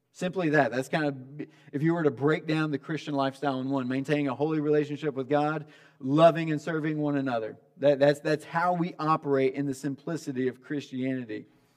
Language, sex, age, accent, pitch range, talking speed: English, male, 40-59, American, 140-180 Hz, 190 wpm